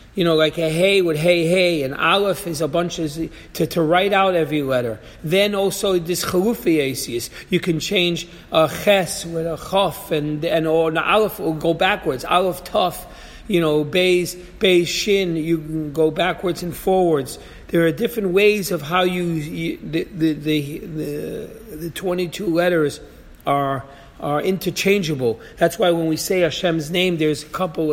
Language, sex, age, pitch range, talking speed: English, male, 40-59, 150-175 Hz, 175 wpm